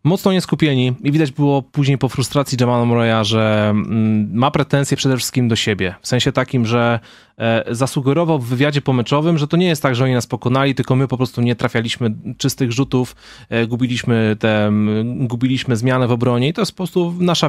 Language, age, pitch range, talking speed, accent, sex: Polish, 20-39, 120-150 Hz, 185 wpm, native, male